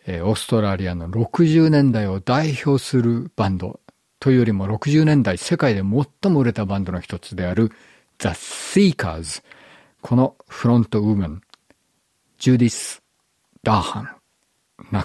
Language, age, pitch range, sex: Japanese, 50-69, 95-135 Hz, male